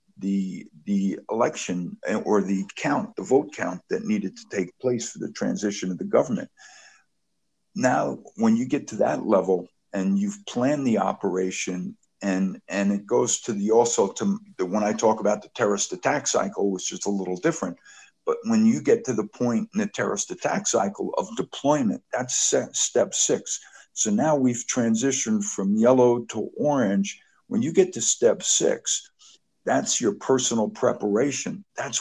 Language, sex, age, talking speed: English, male, 50-69, 170 wpm